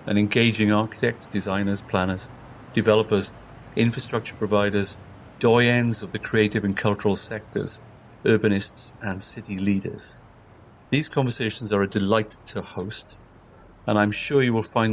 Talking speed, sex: 130 wpm, male